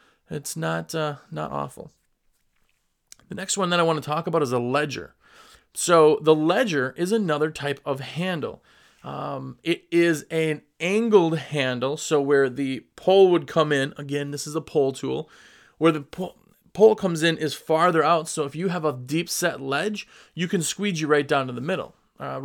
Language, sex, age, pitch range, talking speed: English, male, 30-49, 145-185 Hz, 185 wpm